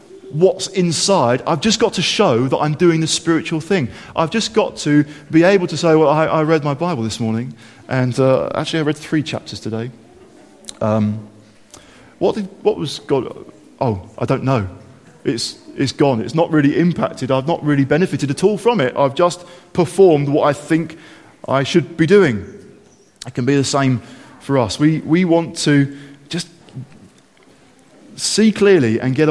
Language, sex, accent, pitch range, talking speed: English, male, British, 135-195 Hz, 180 wpm